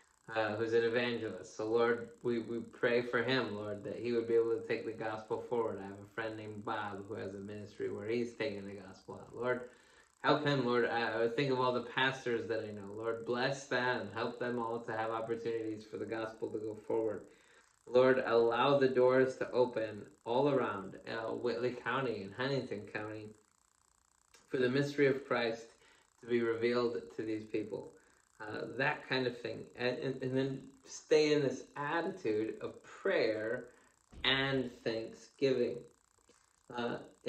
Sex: male